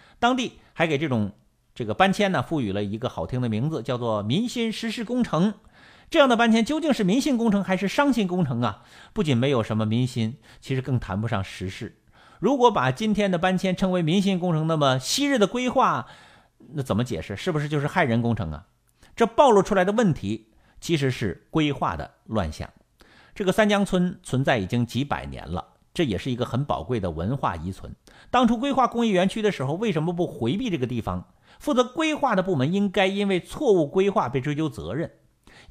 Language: Chinese